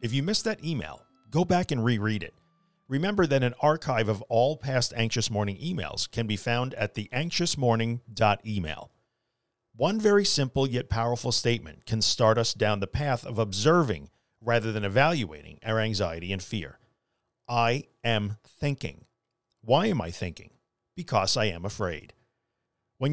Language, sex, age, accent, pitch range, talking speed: English, male, 50-69, American, 110-140 Hz, 155 wpm